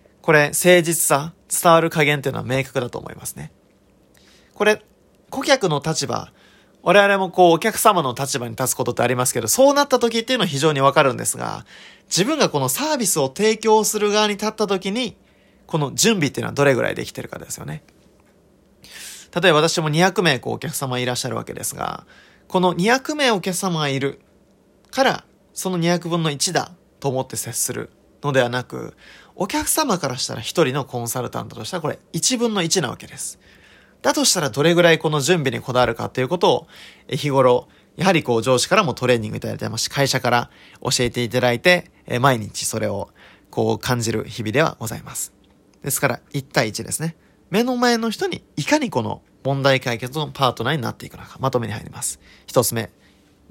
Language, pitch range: Japanese, 125-185 Hz